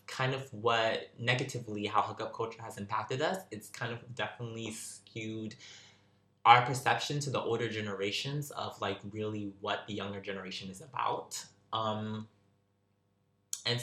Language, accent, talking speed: English, American, 140 wpm